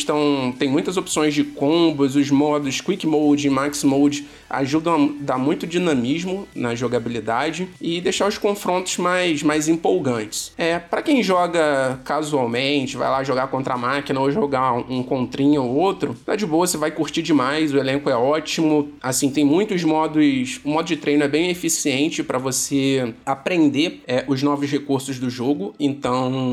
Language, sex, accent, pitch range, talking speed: Portuguese, male, Brazilian, 135-160 Hz, 170 wpm